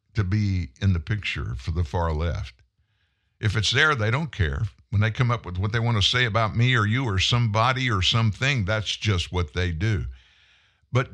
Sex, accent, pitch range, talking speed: male, American, 95-120 Hz, 210 wpm